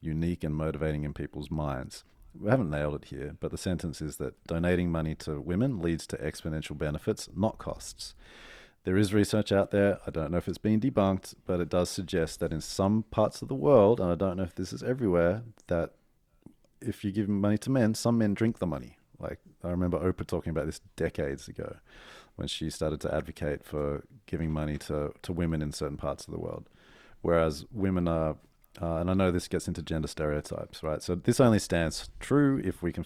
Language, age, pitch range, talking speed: English, 30-49, 75-95 Hz, 210 wpm